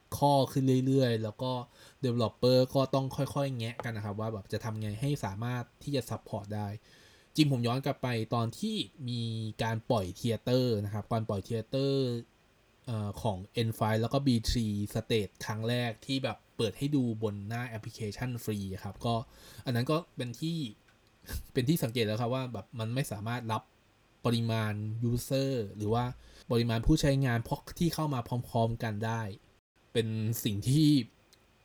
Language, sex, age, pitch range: Thai, male, 20-39, 110-130 Hz